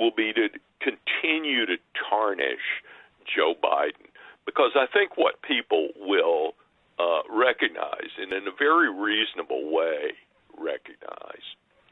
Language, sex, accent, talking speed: English, male, American, 115 wpm